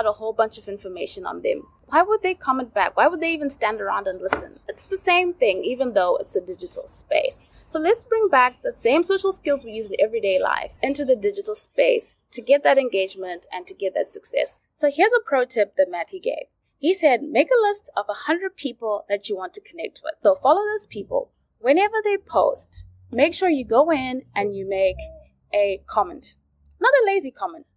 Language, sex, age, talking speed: English, female, 20-39, 215 wpm